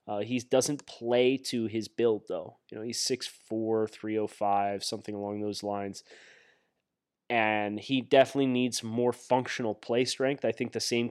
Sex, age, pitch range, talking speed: male, 20-39, 110-130 Hz, 155 wpm